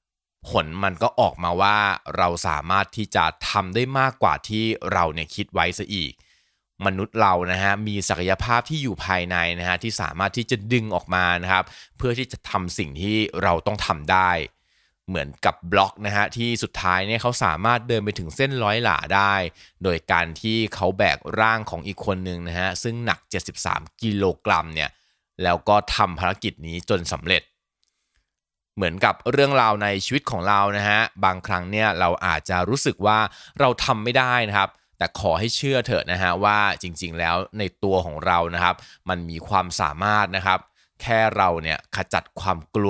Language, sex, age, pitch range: Thai, male, 20-39, 90-110 Hz